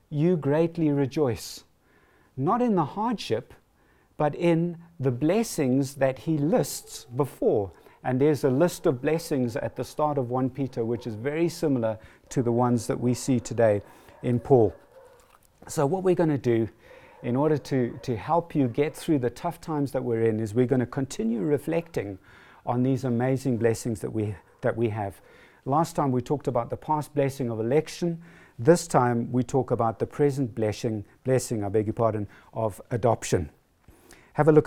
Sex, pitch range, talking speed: male, 120-155 Hz, 180 wpm